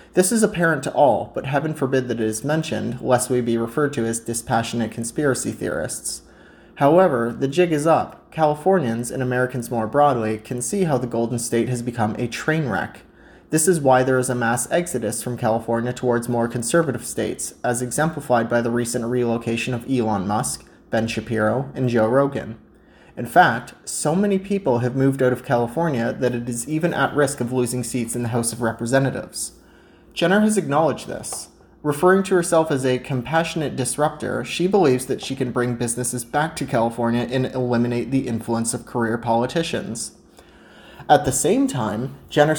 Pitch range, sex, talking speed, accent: 115-145 Hz, male, 180 wpm, American